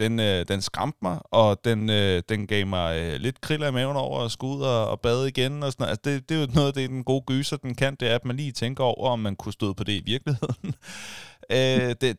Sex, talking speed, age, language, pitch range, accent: male, 260 wpm, 30-49, Danish, 100-130 Hz, native